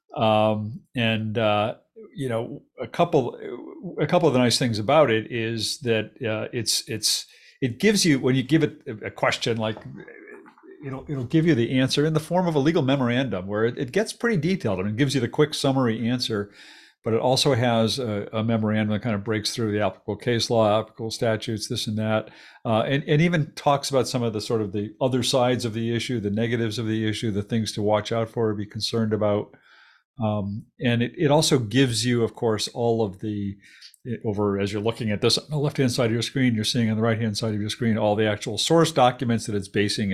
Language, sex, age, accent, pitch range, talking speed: English, male, 50-69, American, 105-125 Hz, 225 wpm